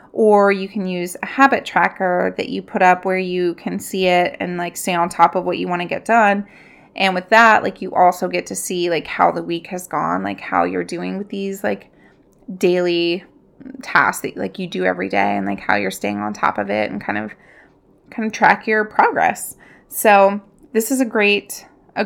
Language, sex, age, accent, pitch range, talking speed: English, female, 20-39, American, 180-210 Hz, 220 wpm